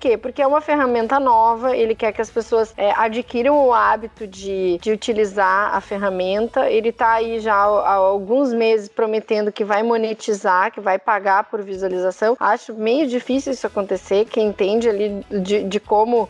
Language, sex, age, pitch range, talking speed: Portuguese, female, 10-29, 205-240 Hz, 165 wpm